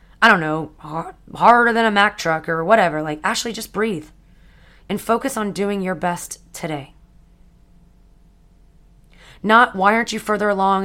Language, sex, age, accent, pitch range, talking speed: English, female, 20-39, American, 155-215 Hz, 150 wpm